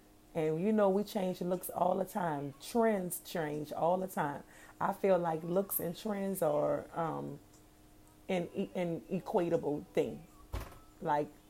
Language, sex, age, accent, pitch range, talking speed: English, female, 30-49, American, 155-190 Hz, 140 wpm